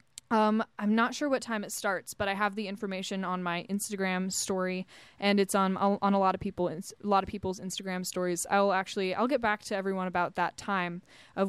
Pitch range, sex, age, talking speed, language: 195-220 Hz, female, 20-39, 220 wpm, English